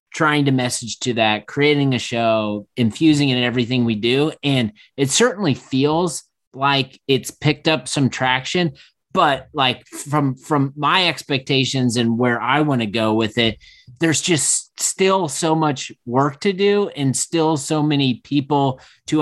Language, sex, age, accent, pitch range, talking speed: English, male, 30-49, American, 115-140 Hz, 160 wpm